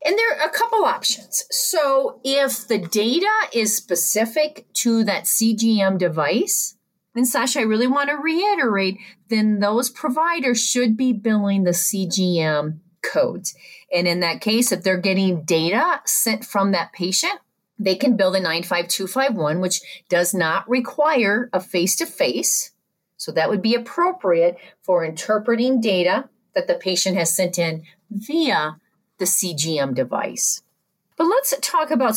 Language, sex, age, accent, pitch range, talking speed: English, female, 40-59, American, 185-260 Hz, 145 wpm